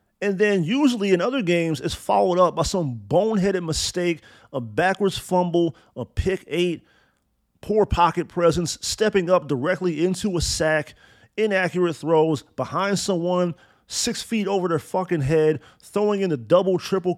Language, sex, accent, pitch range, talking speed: English, male, American, 155-195 Hz, 150 wpm